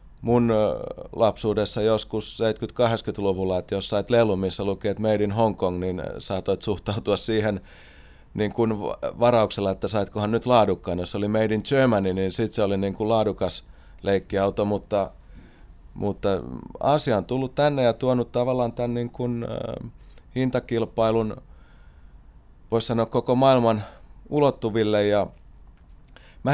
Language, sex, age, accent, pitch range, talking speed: Finnish, male, 30-49, native, 100-130 Hz, 130 wpm